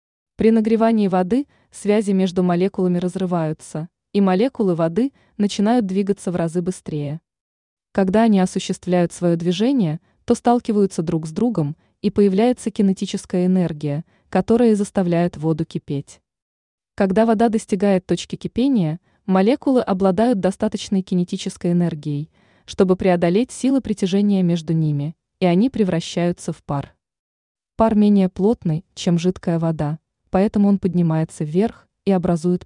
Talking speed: 120 wpm